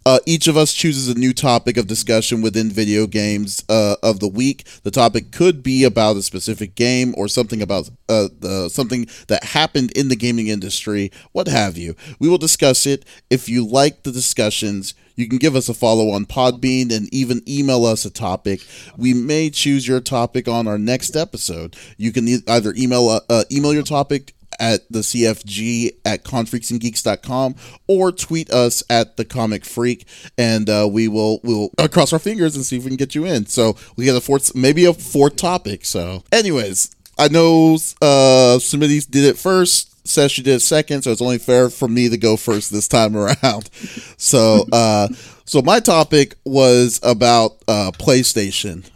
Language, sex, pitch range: English, male, 110-135 Hz